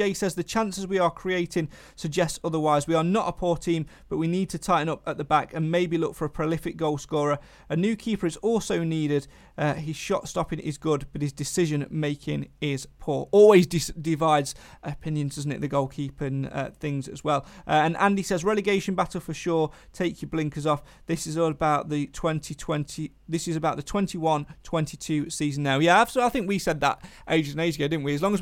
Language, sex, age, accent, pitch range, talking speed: English, male, 30-49, British, 150-190 Hz, 215 wpm